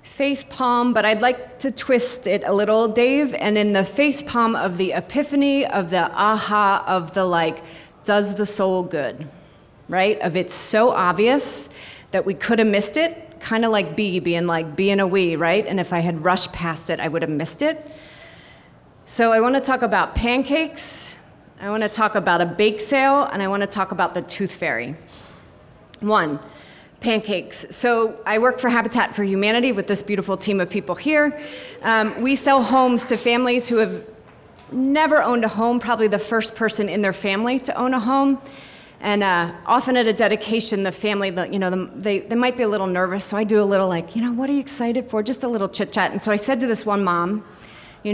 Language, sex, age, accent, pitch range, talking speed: English, female, 30-49, American, 190-245 Hz, 210 wpm